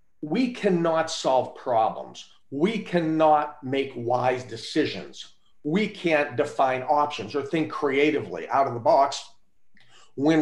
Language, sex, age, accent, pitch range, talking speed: English, male, 40-59, American, 125-160 Hz, 120 wpm